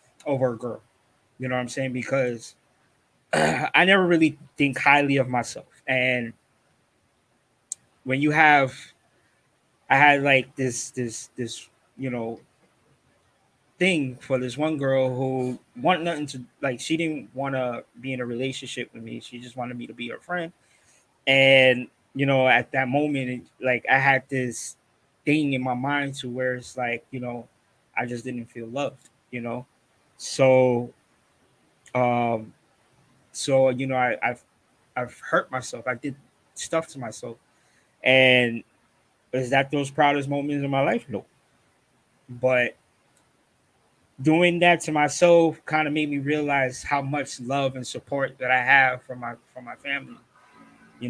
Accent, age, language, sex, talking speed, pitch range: American, 20-39, English, male, 155 wpm, 125-140 Hz